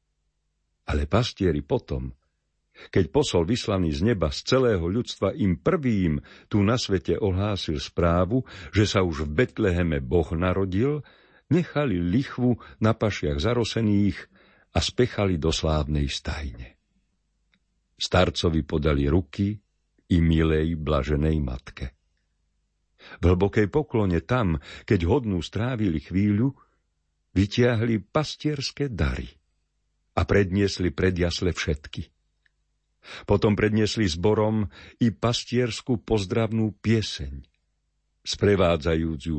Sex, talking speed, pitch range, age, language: male, 100 wpm, 75-105 Hz, 50-69, Slovak